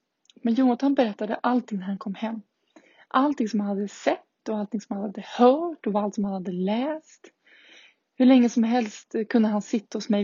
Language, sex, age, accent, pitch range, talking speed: Swedish, female, 20-39, native, 210-240 Hz, 200 wpm